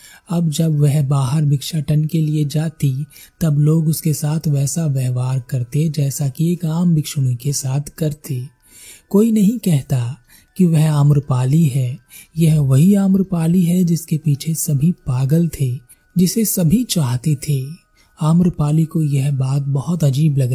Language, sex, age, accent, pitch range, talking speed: Hindi, male, 30-49, native, 140-170 Hz, 145 wpm